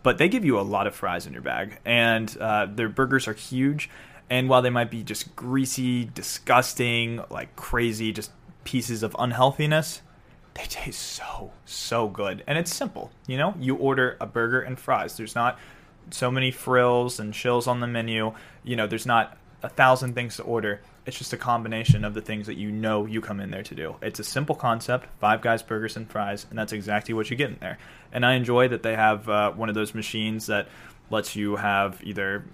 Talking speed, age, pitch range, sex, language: 210 wpm, 20-39, 110-125 Hz, male, English